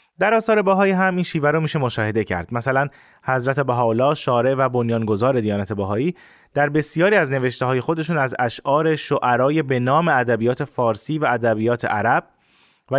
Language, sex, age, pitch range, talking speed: Persian, male, 20-39, 120-165 Hz, 155 wpm